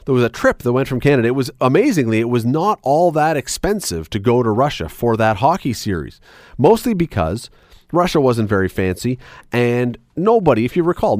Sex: male